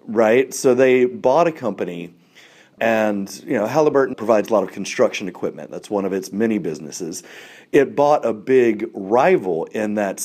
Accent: American